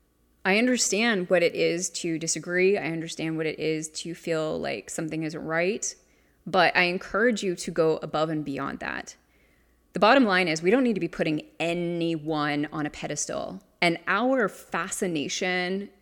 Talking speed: 170 wpm